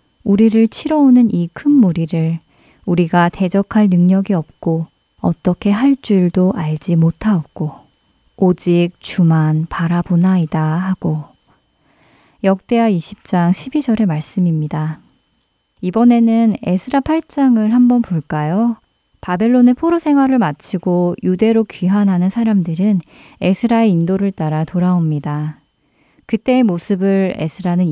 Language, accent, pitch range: Korean, native, 165-220 Hz